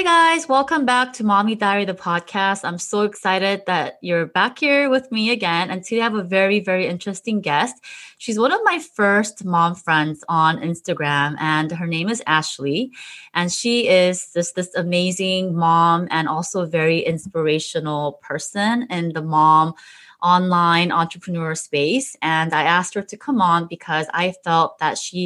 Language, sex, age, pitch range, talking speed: English, female, 20-39, 160-205 Hz, 175 wpm